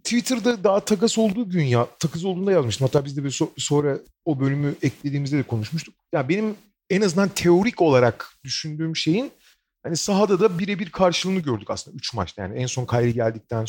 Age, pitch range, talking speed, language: 40-59, 130-200 Hz, 185 wpm, Turkish